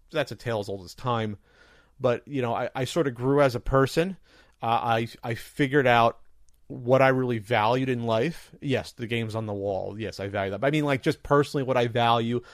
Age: 30-49